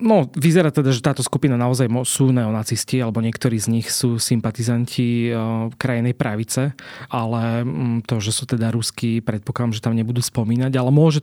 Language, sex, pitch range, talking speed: Slovak, male, 115-135 Hz, 160 wpm